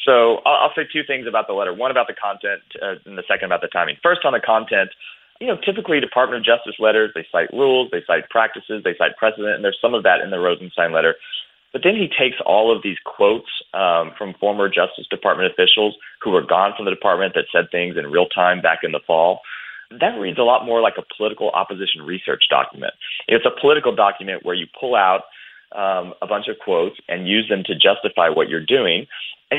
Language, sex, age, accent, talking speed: English, male, 30-49, American, 225 wpm